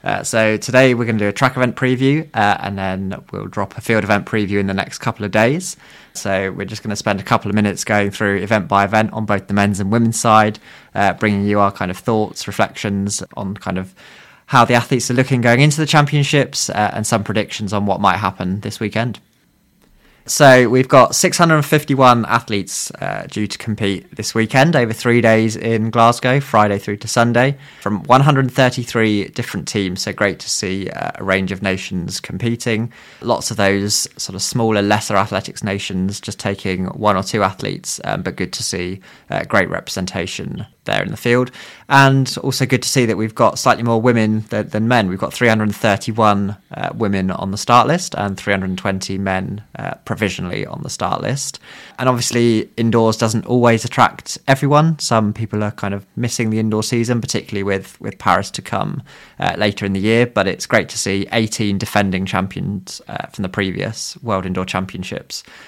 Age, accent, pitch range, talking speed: 20-39, British, 100-120 Hz, 195 wpm